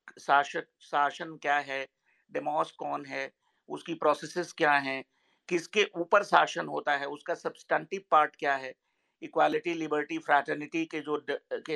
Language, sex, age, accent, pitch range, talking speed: Hindi, male, 50-69, native, 150-175 Hz, 145 wpm